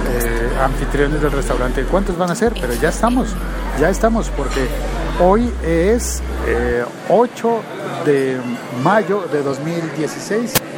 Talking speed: 120 wpm